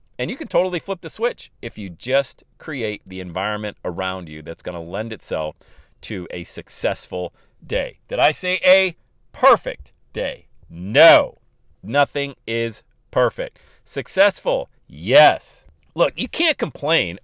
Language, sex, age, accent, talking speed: English, male, 40-59, American, 140 wpm